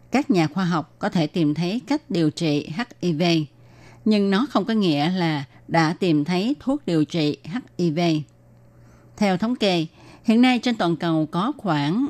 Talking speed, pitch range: 175 wpm, 155-215 Hz